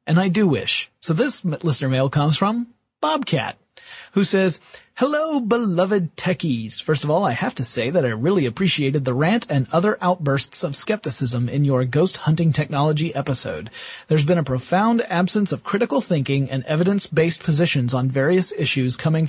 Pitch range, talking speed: 135-185 Hz, 170 wpm